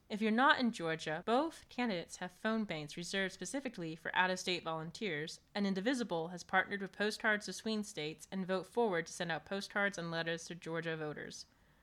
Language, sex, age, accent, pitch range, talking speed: English, female, 20-39, American, 165-205 Hz, 185 wpm